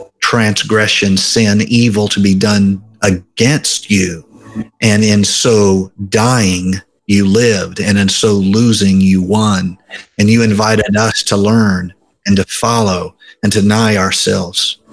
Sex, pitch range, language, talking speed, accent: male, 95-110 Hz, English, 135 wpm, American